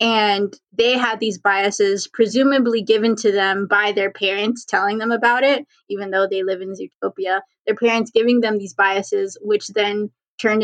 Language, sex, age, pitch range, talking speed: English, female, 20-39, 200-225 Hz, 175 wpm